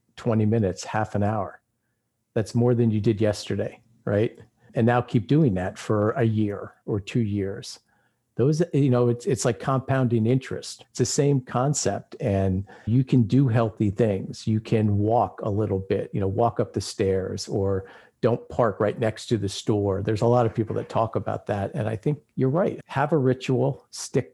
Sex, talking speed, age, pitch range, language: male, 195 wpm, 50-69, 105-125 Hz, English